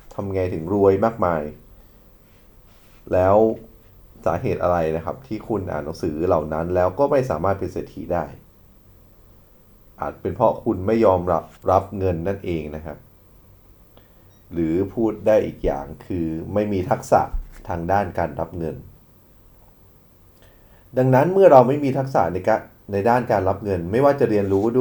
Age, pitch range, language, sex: 30-49, 85-110 Hz, Thai, male